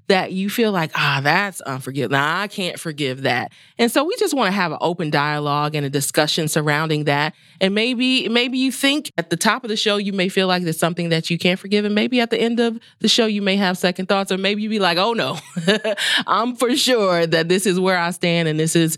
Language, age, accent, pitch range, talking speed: English, 30-49, American, 160-215 Hz, 255 wpm